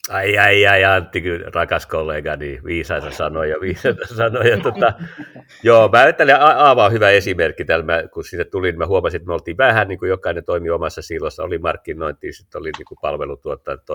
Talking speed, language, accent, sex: 180 wpm, Finnish, native, male